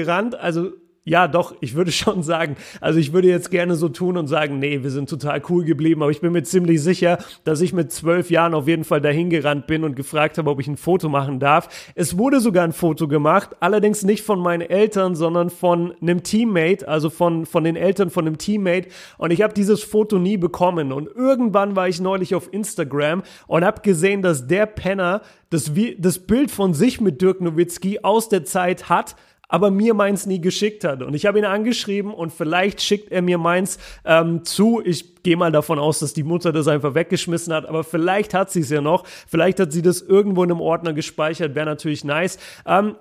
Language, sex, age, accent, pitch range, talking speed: German, male, 30-49, German, 165-190 Hz, 215 wpm